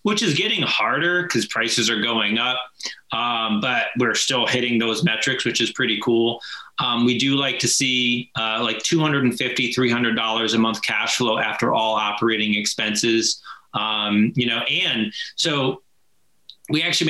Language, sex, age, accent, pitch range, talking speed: English, male, 30-49, American, 110-140 Hz, 160 wpm